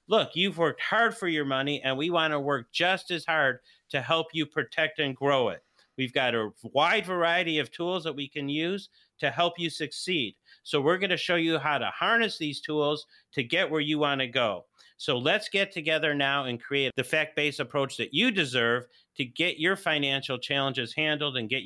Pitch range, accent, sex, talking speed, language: 140-170 Hz, American, male, 210 wpm, English